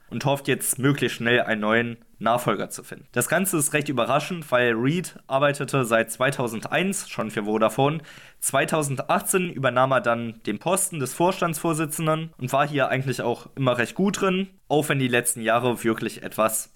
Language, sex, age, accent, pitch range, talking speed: German, male, 20-39, German, 115-145 Hz, 170 wpm